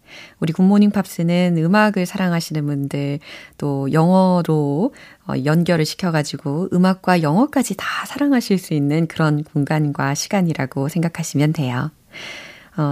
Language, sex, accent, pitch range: Korean, female, native, 155-235 Hz